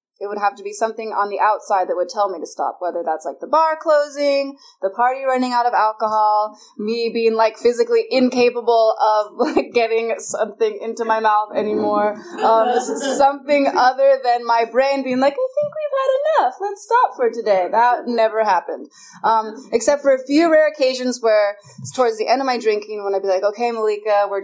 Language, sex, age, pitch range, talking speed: English, female, 20-39, 210-275 Hz, 200 wpm